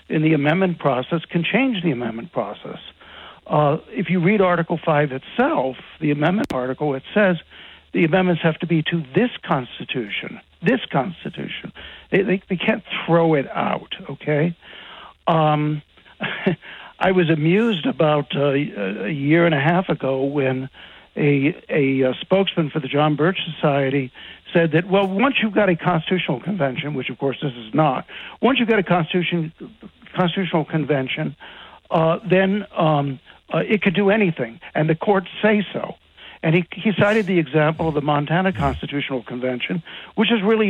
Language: English